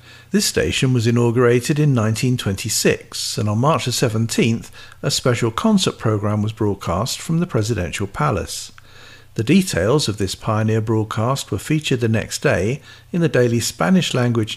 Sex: male